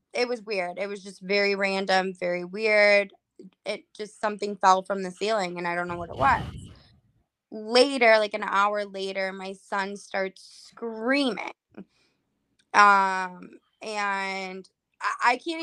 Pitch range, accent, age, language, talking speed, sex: 195-240 Hz, American, 20-39, English, 140 wpm, female